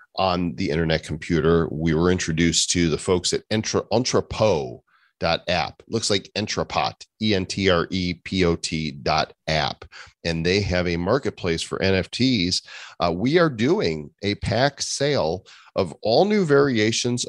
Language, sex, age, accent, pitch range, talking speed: English, male, 40-59, American, 80-100 Hz, 120 wpm